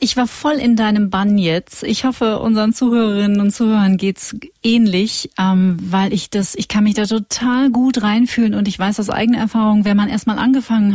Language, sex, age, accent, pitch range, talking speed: German, female, 40-59, German, 190-230 Hz, 205 wpm